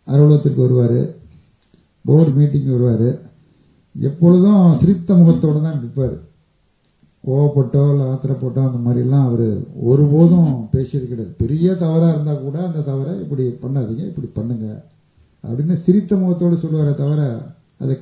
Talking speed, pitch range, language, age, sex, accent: 115 wpm, 125-160 Hz, Tamil, 50-69, male, native